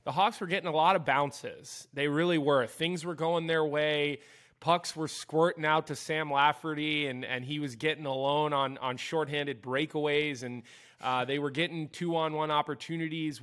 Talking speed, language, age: 190 wpm, English, 20-39